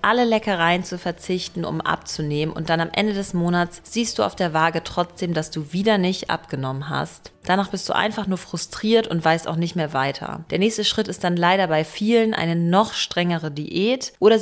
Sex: female